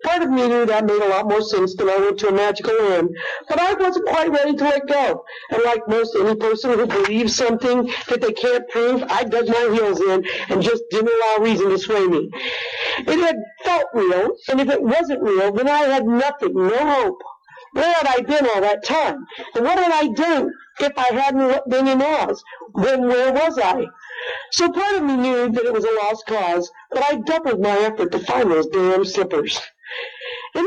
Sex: female